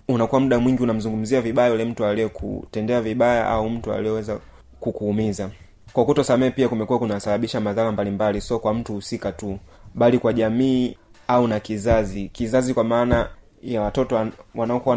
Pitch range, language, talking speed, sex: 105-125 Hz, Swahili, 160 wpm, male